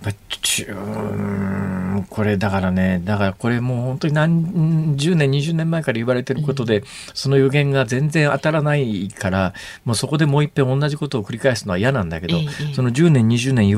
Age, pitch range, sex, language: 50-69, 110-160 Hz, male, Japanese